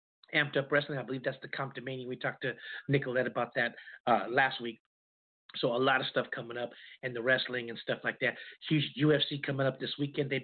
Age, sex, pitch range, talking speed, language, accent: 40-59, male, 125-150 Hz, 225 wpm, English, American